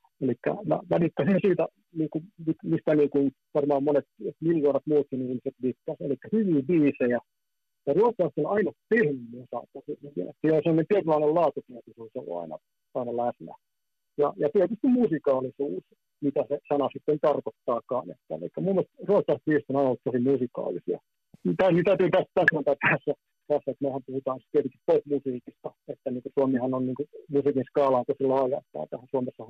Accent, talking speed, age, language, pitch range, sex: native, 155 wpm, 50-69, Finnish, 130-160 Hz, male